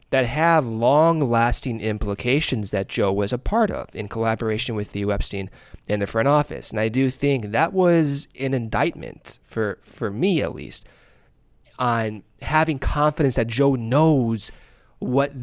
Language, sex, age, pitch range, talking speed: English, male, 20-39, 110-140 Hz, 150 wpm